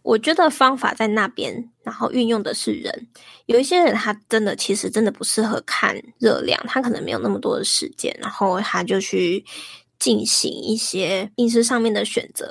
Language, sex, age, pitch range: Chinese, female, 20-39, 210-260 Hz